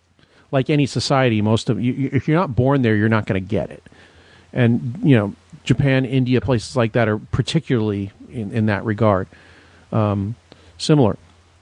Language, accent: English, American